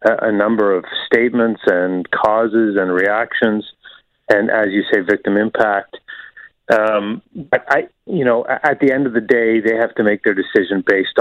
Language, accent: English, American